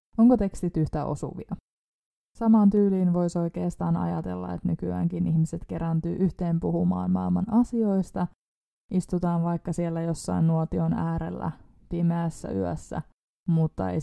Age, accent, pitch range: 20-39, native, 165-205 Hz